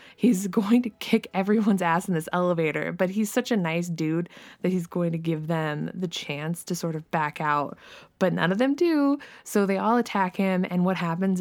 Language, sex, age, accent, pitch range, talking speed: English, female, 20-39, American, 165-210 Hz, 215 wpm